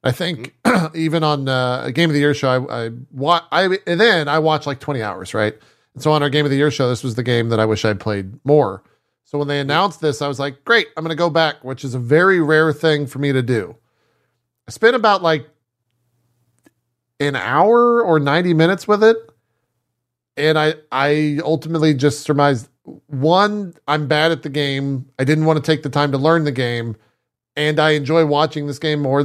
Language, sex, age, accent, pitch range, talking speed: English, male, 40-59, American, 130-165 Hz, 220 wpm